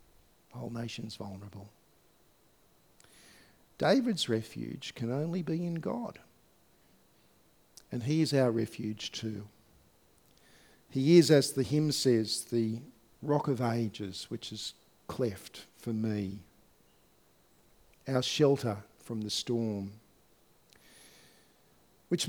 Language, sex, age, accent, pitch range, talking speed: English, male, 50-69, Australian, 110-165 Hz, 100 wpm